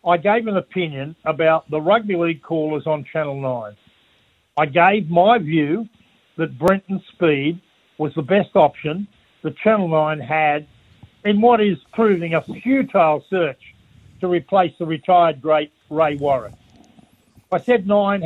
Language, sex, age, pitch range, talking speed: English, male, 50-69, 155-205 Hz, 145 wpm